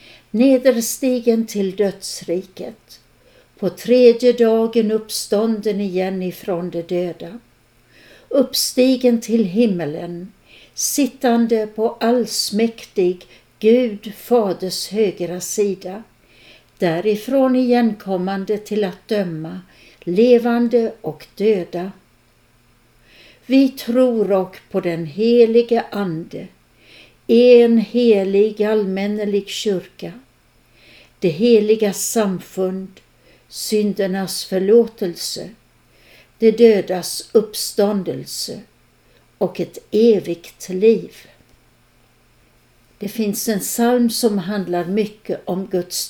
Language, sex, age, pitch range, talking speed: Swedish, female, 60-79, 185-230 Hz, 80 wpm